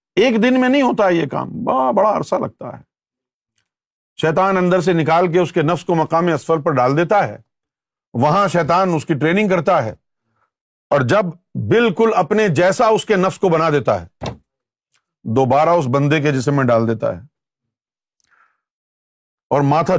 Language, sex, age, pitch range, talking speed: Urdu, male, 50-69, 150-230 Hz, 170 wpm